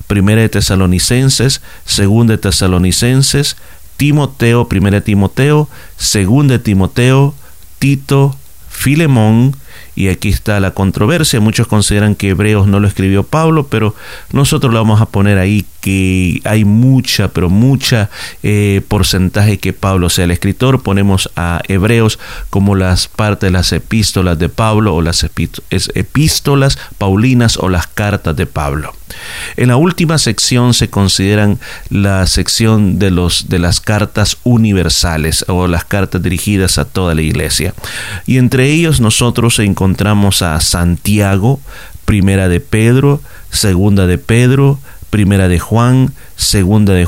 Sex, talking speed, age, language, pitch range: male, 135 wpm, 40-59, Spanish, 95-125 Hz